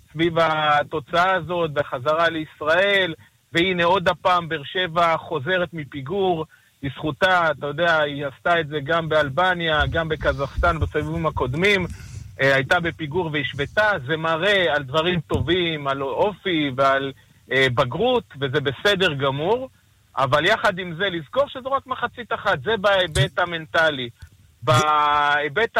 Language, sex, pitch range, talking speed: Hebrew, male, 140-180 Hz, 125 wpm